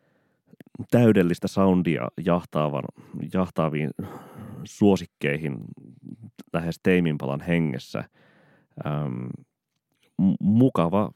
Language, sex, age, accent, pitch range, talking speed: Finnish, male, 30-49, native, 75-95 Hz, 55 wpm